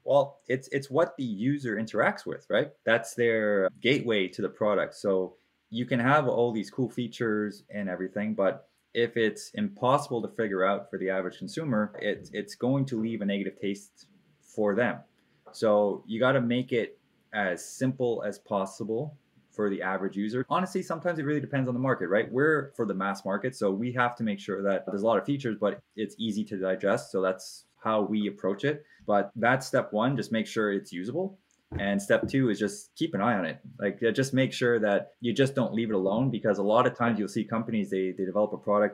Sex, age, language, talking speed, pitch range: male, 20-39, English, 215 wpm, 100-125 Hz